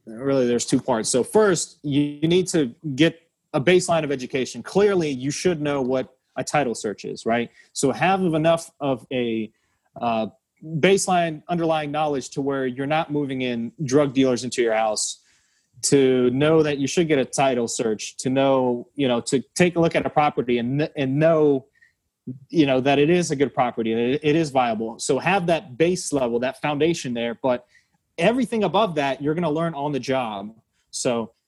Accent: American